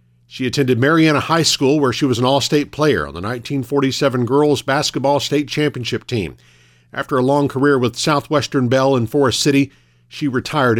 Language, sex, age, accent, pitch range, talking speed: English, male, 50-69, American, 90-140 Hz, 170 wpm